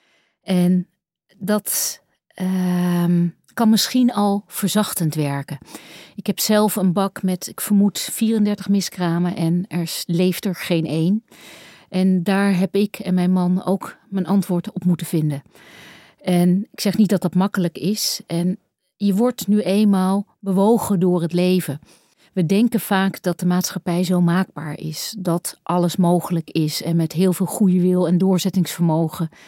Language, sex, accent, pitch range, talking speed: Dutch, female, Dutch, 175-195 Hz, 155 wpm